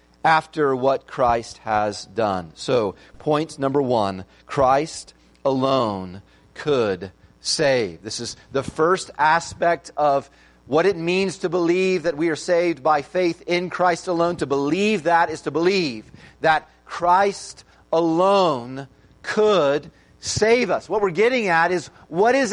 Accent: American